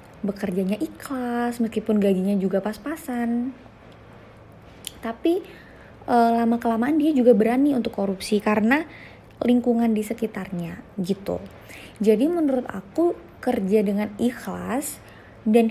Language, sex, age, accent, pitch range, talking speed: Indonesian, female, 20-39, native, 200-245 Hz, 100 wpm